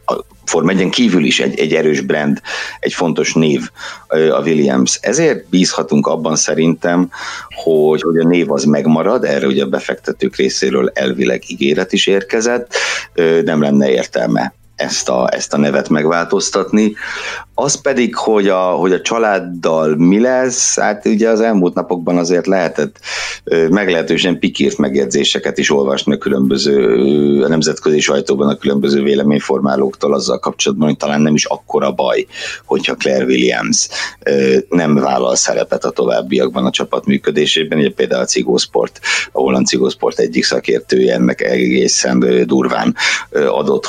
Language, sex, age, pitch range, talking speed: Hungarian, male, 60-79, 70-90 Hz, 135 wpm